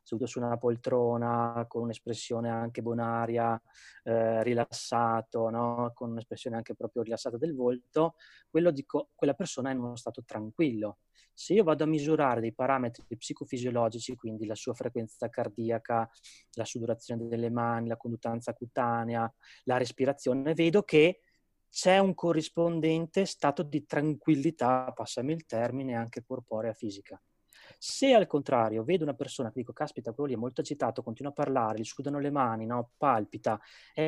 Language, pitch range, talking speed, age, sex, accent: Italian, 115-150 Hz, 150 wpm, 20-39, male, native